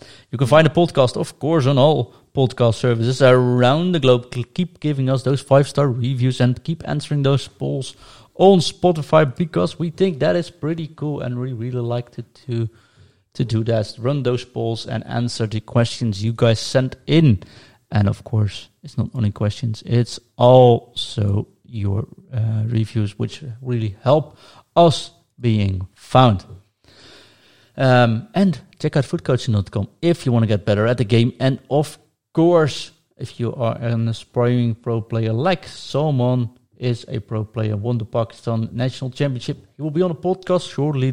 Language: English